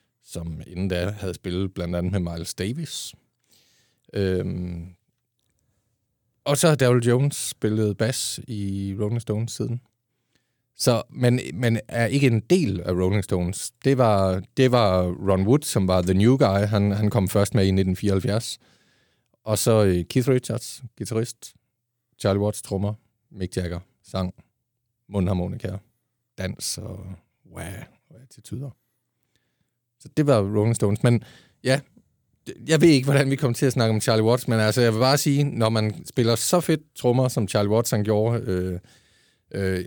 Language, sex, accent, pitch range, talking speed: Danish, male, native, 95-125 Hz, 155 wpm